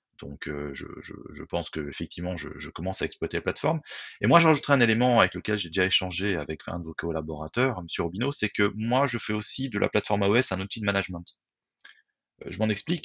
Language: French